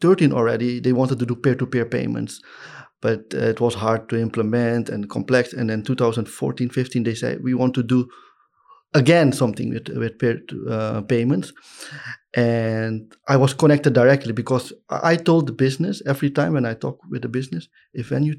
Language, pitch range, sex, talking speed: English, 115-140 Hz, male, 175 wpm